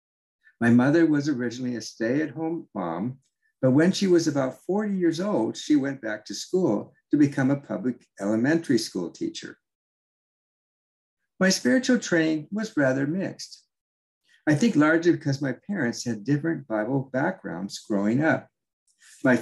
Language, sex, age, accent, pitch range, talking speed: English, male, 60-79, American, 120-170 Hz, 140 wpm